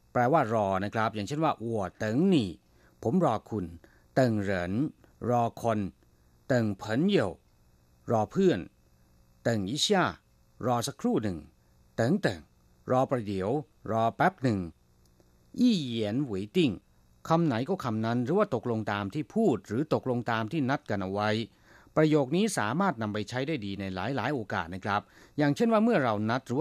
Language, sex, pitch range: Thai, male, 95-140 Hz